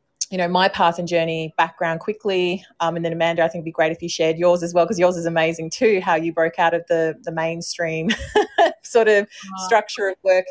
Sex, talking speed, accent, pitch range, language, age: female, 235 wpm, Australian, 160-180 Hz, English, 30-49